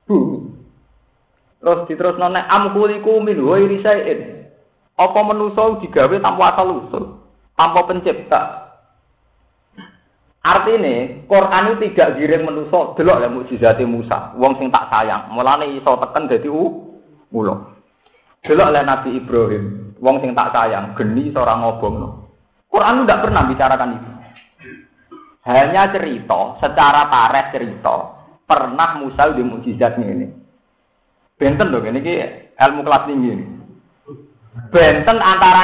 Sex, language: male, Indonesian